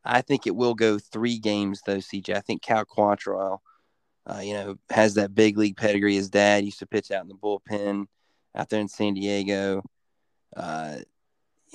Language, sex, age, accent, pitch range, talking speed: English, male, 20-39, American, 100-115 Hz, 185 wpm